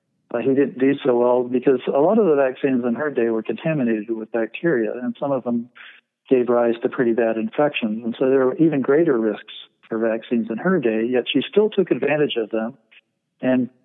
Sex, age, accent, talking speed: male, 50-69, American, 210 wpm